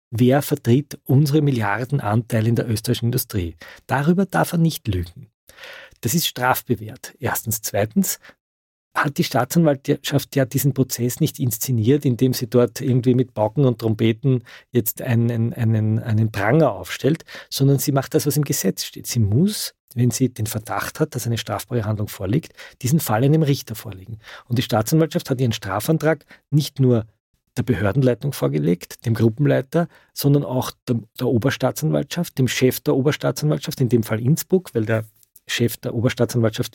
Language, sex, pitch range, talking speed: German, male, 115-145 Hz, 155 wpm